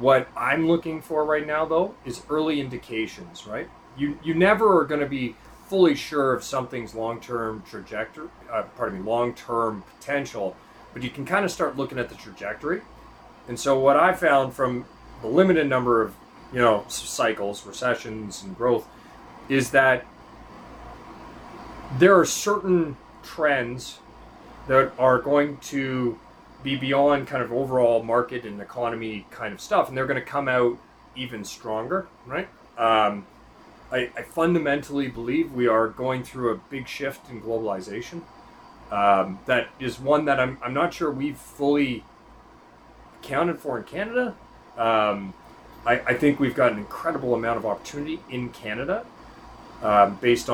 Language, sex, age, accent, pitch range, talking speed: English, male, 30-49, American, 115-140 Hz, 150 wpm